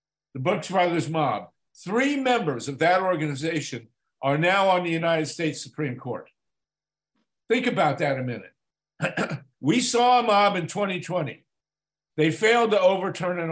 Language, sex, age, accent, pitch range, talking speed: English, male, 50-69, American, 150-190 Hz, 145 wpm